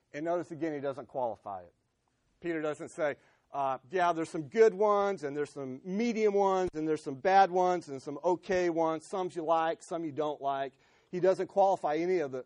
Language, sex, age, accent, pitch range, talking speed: English, male, 40-59, American, 130-180 Hz, 200 wpm